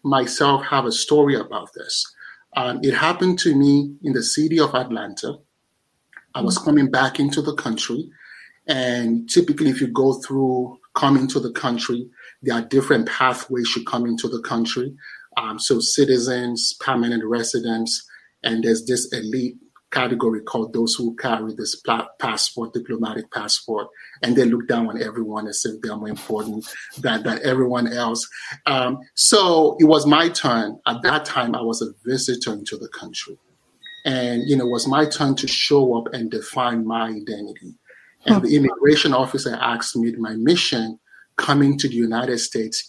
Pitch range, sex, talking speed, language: 115-140 Hz, male, 165 wpm, English